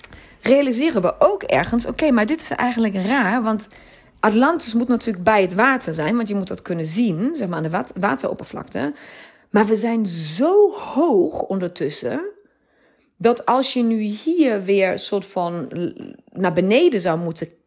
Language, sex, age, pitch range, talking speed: Dutch, female, 40-59, 170-255 Hz, 165 wpm